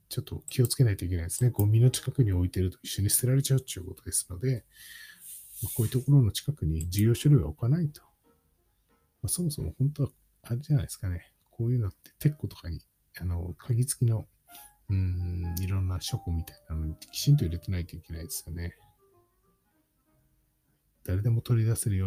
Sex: male